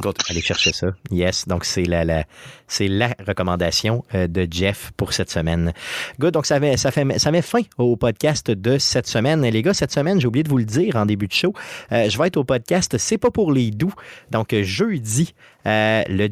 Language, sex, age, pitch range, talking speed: French, male, 30-49, 95-135 Hz, 215 wpm